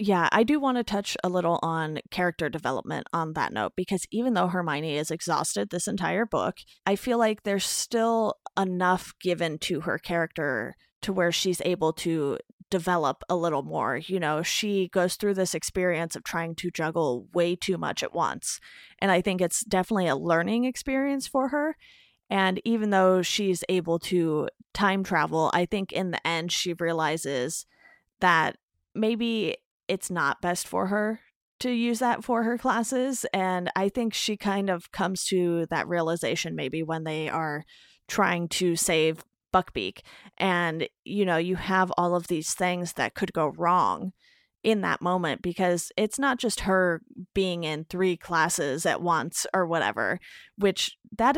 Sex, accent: female, American